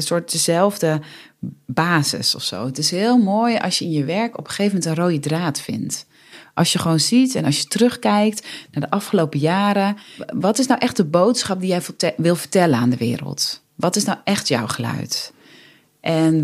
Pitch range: 150-220 Hz